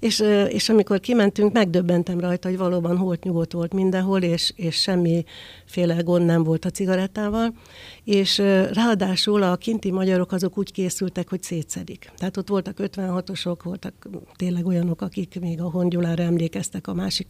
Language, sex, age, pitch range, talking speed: Hungarian, female, 60-79, 175-200 Hz, 150 wpm